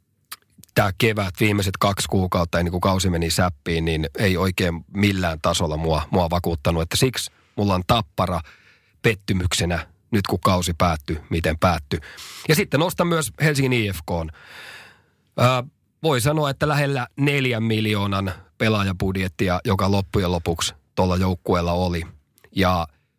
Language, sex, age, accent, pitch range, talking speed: Finnish, male, 30-49, native, 90-110 Hz, 130 wpm